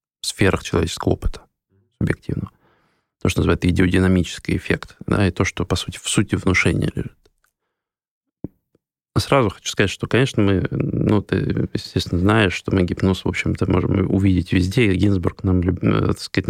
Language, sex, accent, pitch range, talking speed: Russian, male, native, 90-105 Hz, 155 wpm